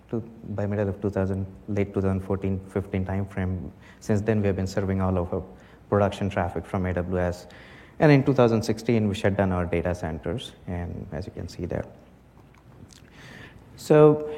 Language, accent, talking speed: English, Indian, 165 wpm